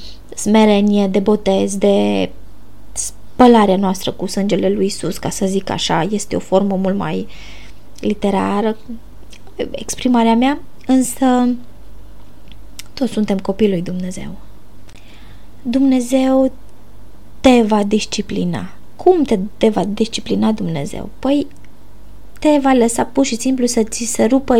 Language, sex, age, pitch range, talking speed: Romanian, female, 20-39, 190-255 Hz, 120 wpm